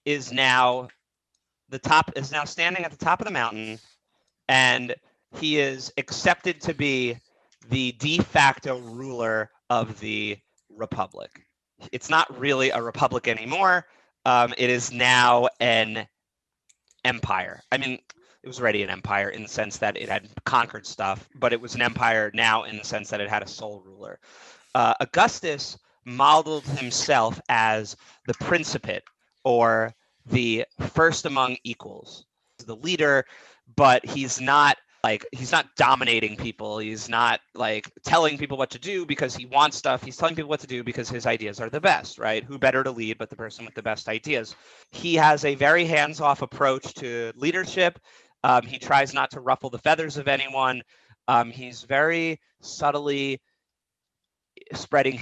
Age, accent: 30-49, American